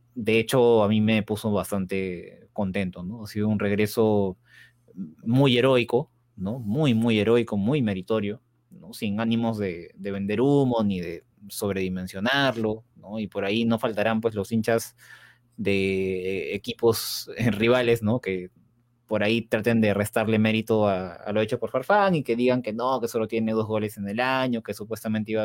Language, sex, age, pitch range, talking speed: Spanish, male, 20-39, 105-120 Hz, 170 wpm